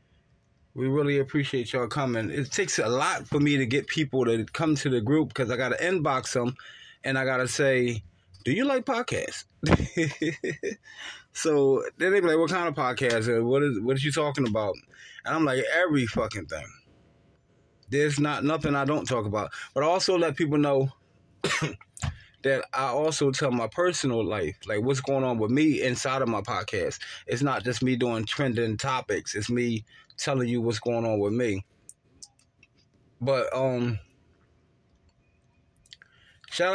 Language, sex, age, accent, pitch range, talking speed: English, male, 20-39, American, 125-150 Hz, 170 wpm